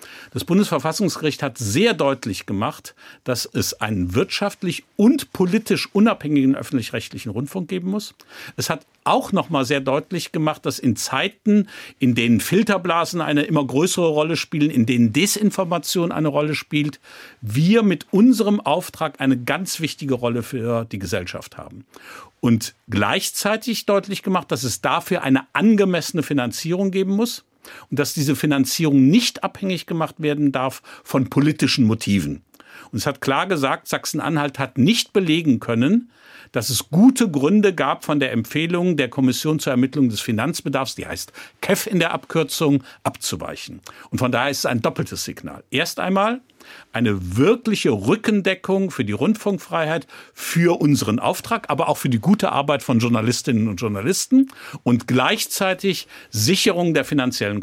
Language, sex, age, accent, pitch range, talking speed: German, male, 50-69, German, 130-190 Hz, 150 wpm